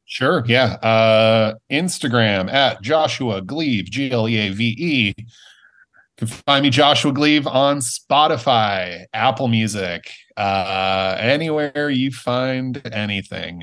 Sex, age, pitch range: male, 30-49, 100-120 Hz